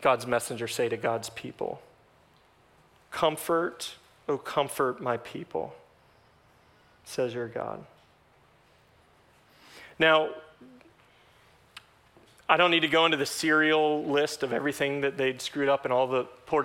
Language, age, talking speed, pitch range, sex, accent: English, 30-49, 125 wpm, 125-150 Hz, male, American